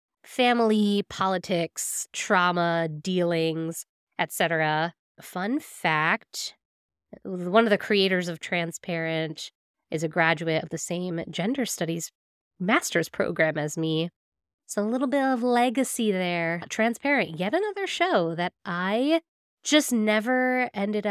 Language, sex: English, female